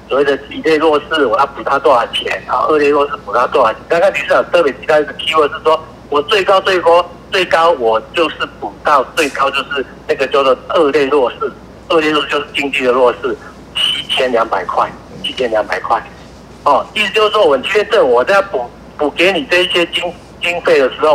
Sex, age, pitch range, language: male, 60-79, 145-210 Hz, Chinese